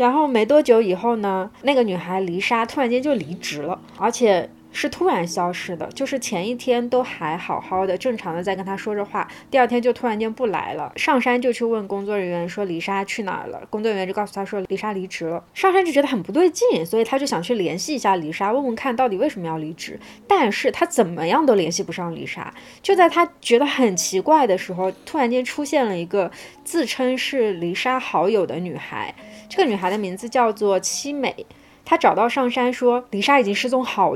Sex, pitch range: female, 190-255 Hz